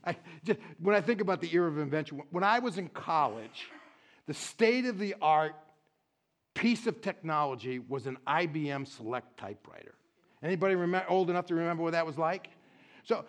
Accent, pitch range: American, 160-215 Hz